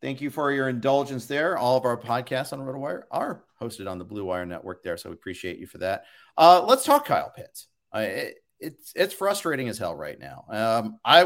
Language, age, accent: English, 40-59, American